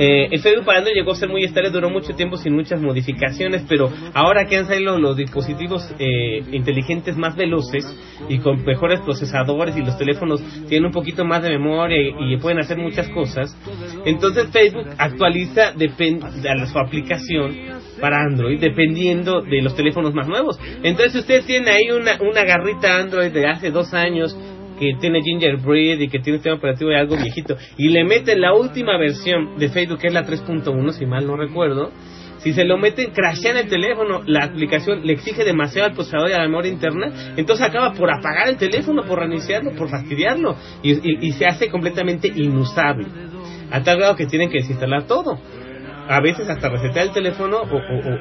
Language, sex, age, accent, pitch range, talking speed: English, male, 30-49, Mexican, 140-180 Hz, 190 wpm